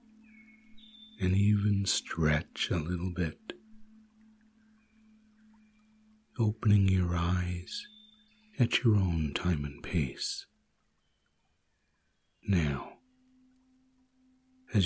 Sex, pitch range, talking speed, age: male, 80-115 Hz, 70 wpm, 60-79